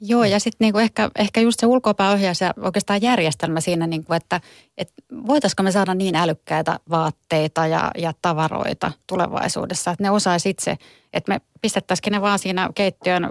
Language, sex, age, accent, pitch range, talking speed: Finnish, female, 30-49, native, 165-195 Hz, 165 wpm